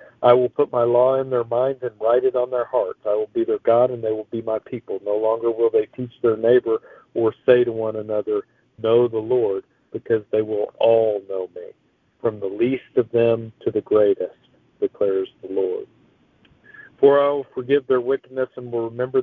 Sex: male